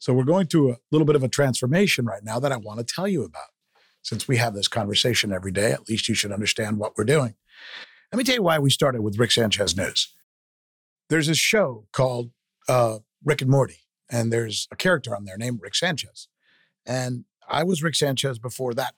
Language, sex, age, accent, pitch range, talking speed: English, male, 50-69, American, 125-160 Hz, 220 wpm